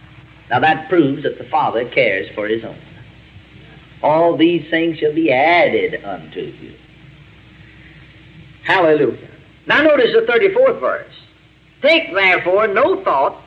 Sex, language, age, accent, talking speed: male, English, 50-69, American, 125 wpm